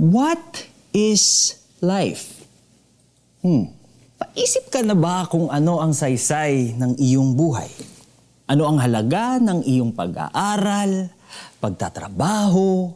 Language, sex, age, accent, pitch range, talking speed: Filipino, male, 20-39, native, 125-190 Hz, 100 wpm